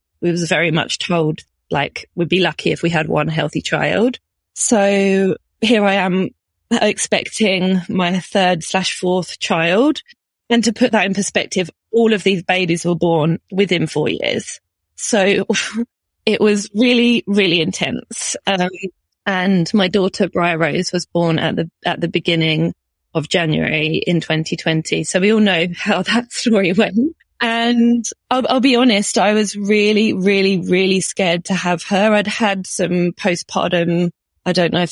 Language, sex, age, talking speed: English, female, 20-39, 160 wpm